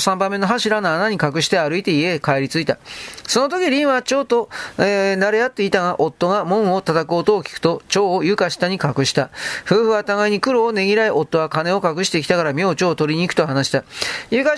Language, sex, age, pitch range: Japanese, male, 40-59, 165-220 Hz